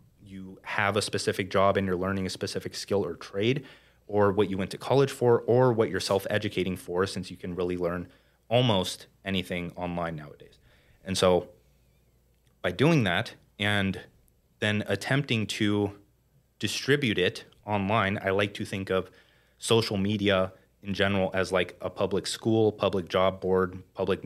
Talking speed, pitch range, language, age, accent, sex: 160 wpm, 95-110 Hz, English, 30-49, American, male